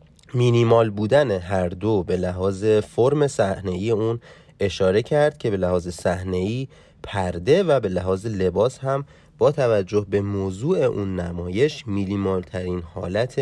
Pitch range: 100-135 Hz